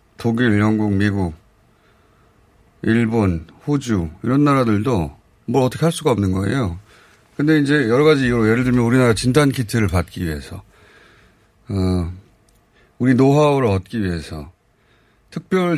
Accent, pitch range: native, 100-130 Hz